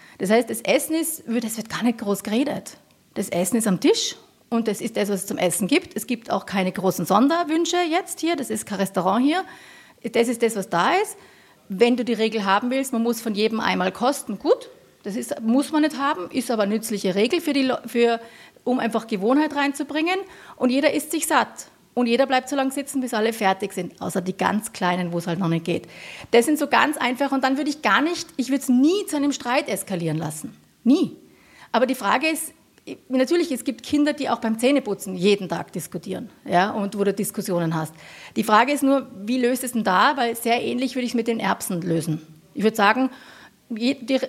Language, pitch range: German, 205-280 Hz